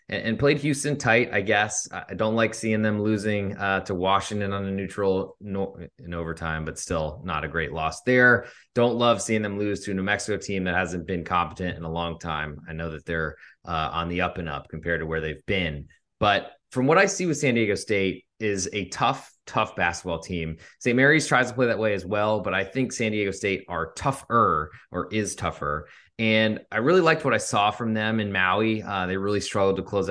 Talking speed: 225 wpm